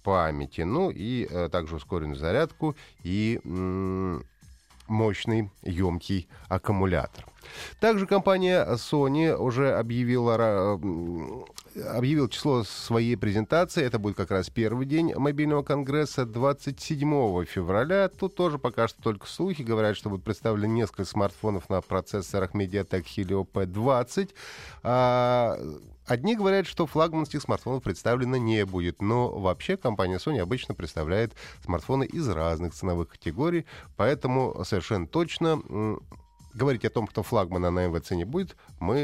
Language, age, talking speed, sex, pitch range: Russian, 30-49, 125 wpm, male, 95-140 Hz